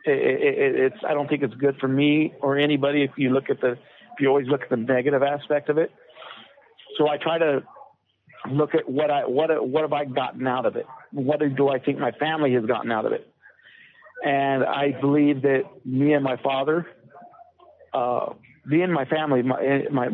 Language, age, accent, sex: English, 50-69, American, male